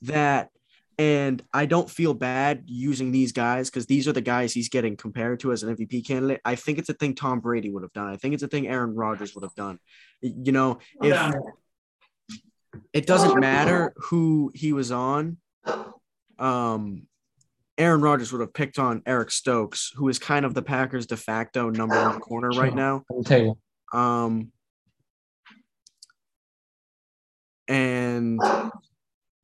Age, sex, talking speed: 20-39, male, 155 wpm